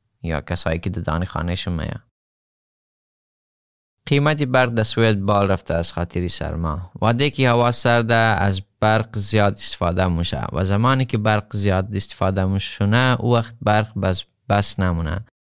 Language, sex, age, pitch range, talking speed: Persian, male, 30-49, 95-115 Hz, 140 wpm